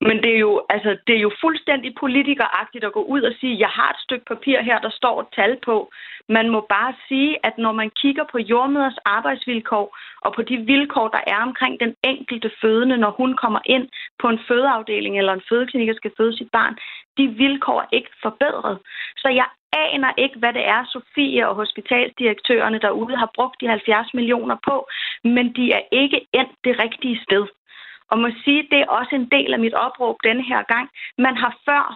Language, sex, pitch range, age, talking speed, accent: Danish, female, 215-255 Hz, 30-49, 200 wpm, native